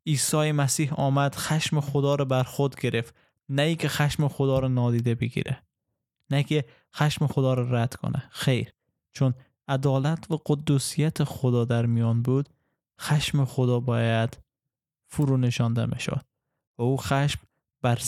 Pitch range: 125-140 Hz